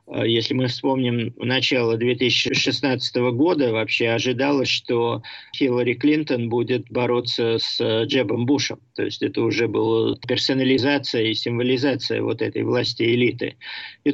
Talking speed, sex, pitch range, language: 125 wpm, male, 120-140 Hz, Russian